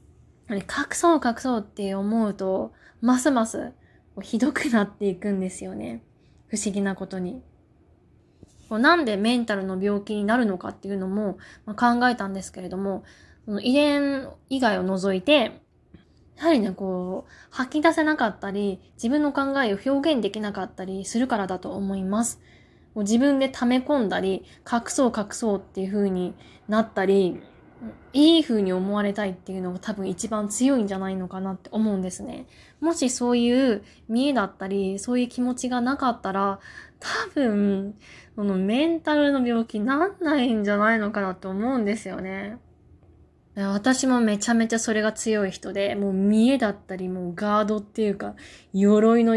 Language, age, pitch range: Japanese, 20-39, 190-245 Hz